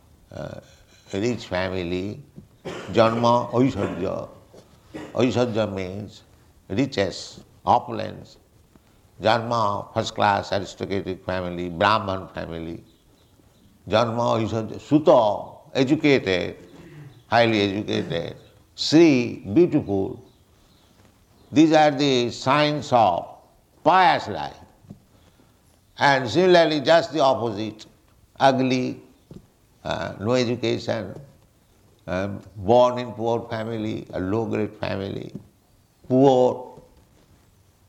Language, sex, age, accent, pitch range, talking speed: English, male, 60-79, Indian, 100-130 Hz, 80 wpm